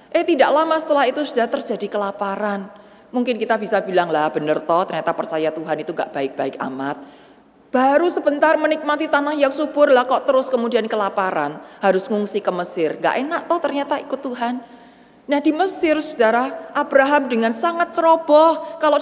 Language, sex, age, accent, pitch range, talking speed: Indonesian, female, 30-49, native, 200-295 Hz, 160 wpm